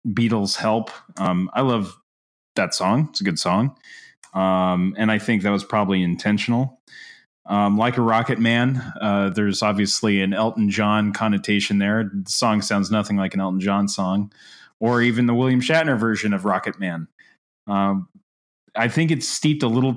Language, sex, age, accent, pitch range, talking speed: English, male, 20-39, American, 95-115 Hz, 170 wpm